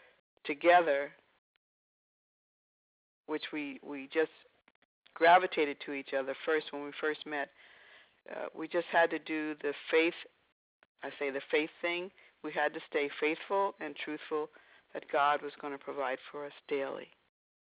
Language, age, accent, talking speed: English, 60-79, American, 145 wpm